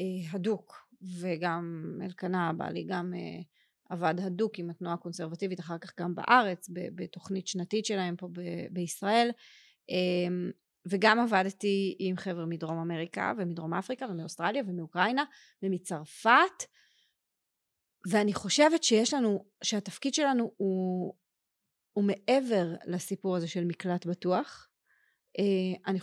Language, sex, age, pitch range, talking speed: Hebrew, female, 30-49, 180-235 Hz, 105 wpm